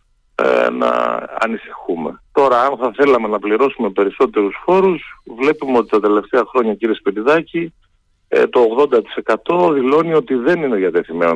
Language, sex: Greek, male